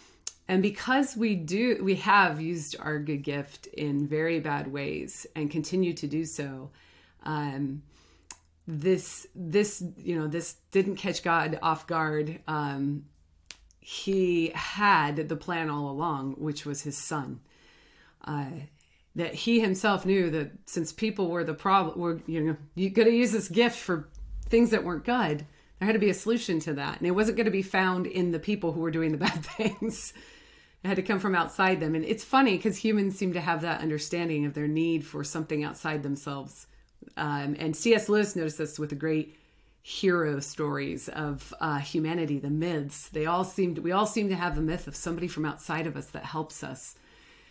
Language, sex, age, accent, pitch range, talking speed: English, female, 30-49, American, 150-190 Hz, 185 wpm